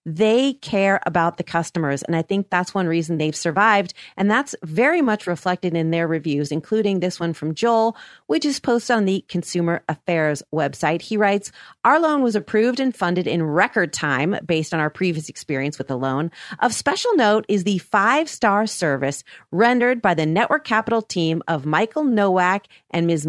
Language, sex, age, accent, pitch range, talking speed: English, female, 40-59, American, 165-230 Hz, 185 wpm